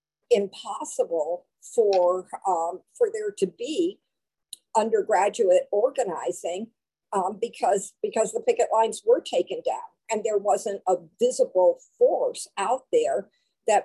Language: English